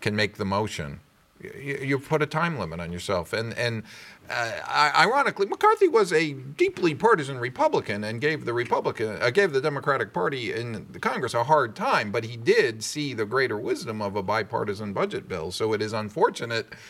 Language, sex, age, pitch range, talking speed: English, male, 40-59, 110-170 Hz, 185 wpm